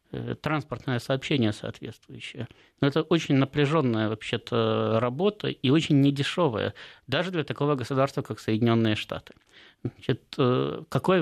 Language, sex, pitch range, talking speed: Russian, male, 115-145 Hz, 105 wpm